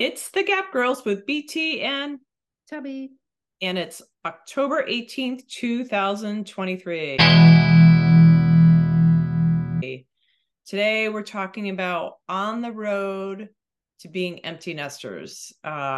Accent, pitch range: American, 155-200 Hz